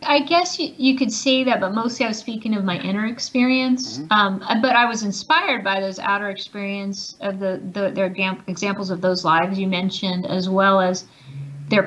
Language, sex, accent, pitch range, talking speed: English, female, American, 180-210 Hz, 195 wpm